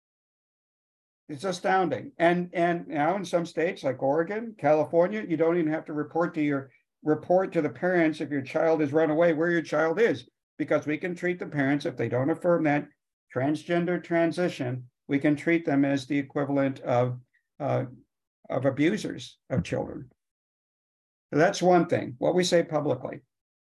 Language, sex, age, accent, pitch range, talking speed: English, male, 60-79, American, 140-170 Hz, 170 wpm